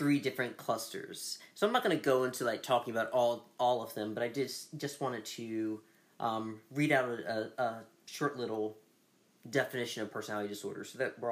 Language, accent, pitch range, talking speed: English, American, 110-155 Hz, 190 wpm